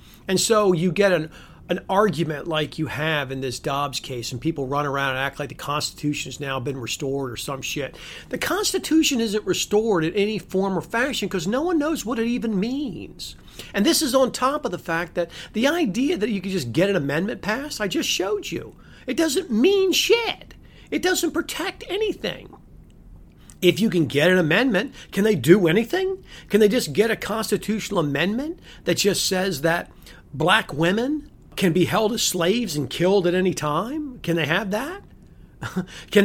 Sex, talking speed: male, 190 wpm